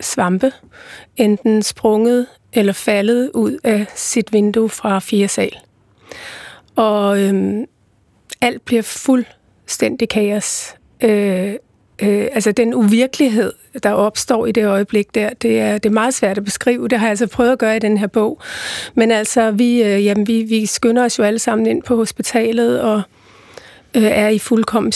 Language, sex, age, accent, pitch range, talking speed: Danish, female, 30-49, native, 210-235 Hz, 145 wpm